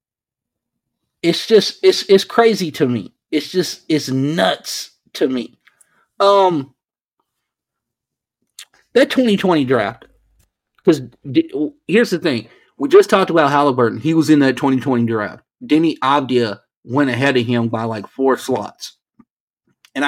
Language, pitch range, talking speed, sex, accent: English, 125-160 Hz, 130 wpm, male, American